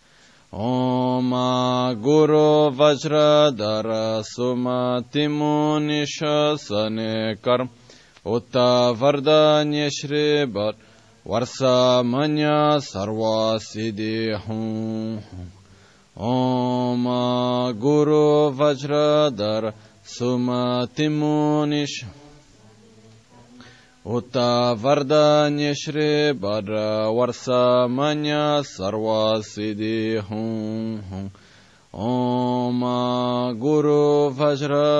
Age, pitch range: 20-39, 110-145 Hz